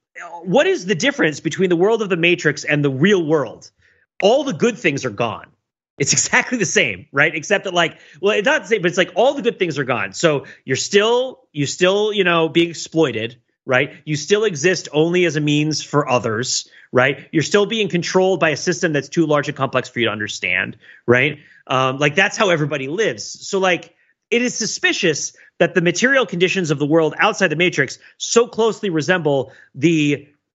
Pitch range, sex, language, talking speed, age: 145-195 Hz, male, English, 205 wpm, 30-49